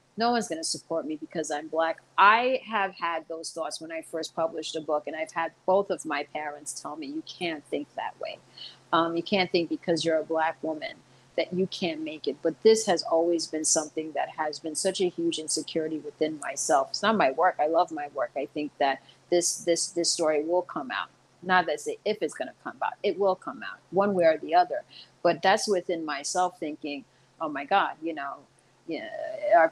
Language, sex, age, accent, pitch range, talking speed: English, female, 40-59, American, 160-215 Hz, 220 wpm